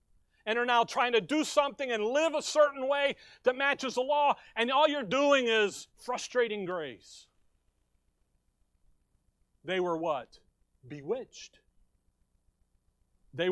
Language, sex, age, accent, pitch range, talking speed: English, male, 40-59, American, 150-225 Hz, 125 wpm